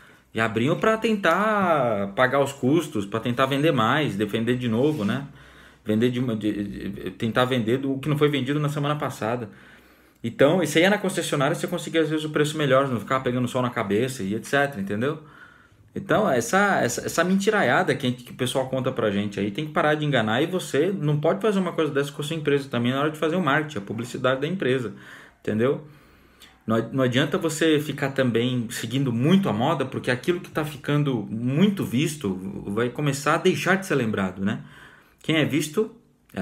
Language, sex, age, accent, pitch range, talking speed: Portuguese, male, 20-39, Brazilian, 120-165 Hz, 205 wpm